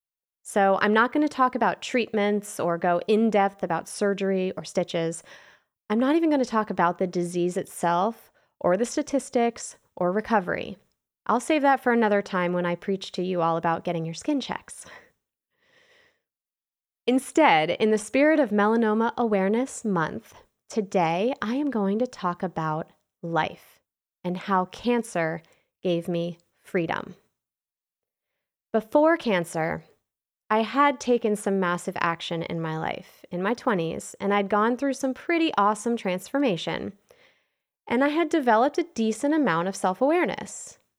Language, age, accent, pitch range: English, 20-39, American, 180-245 Hz